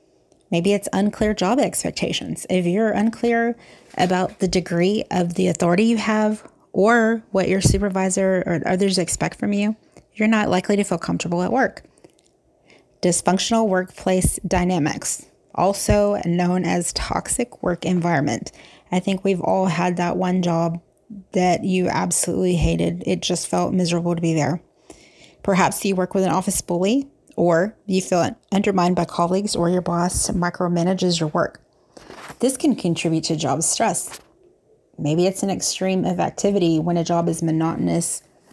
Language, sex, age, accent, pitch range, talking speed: English, female, 30-49, American, 170-195 Hz, 150 wpm